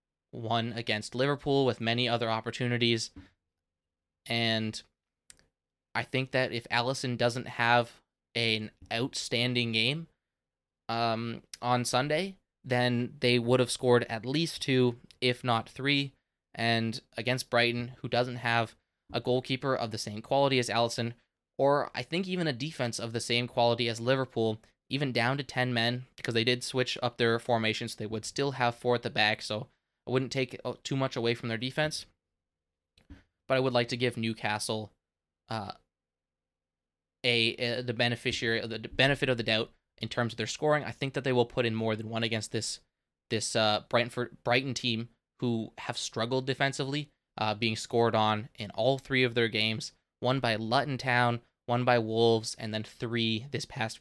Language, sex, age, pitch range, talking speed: English, male, 20-39, 110-125 Hz, 170 wpm